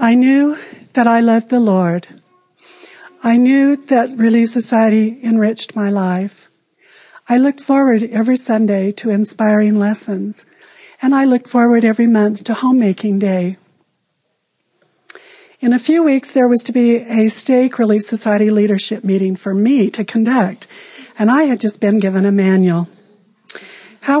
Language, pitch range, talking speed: English, 205-245 Hz, 145 wpm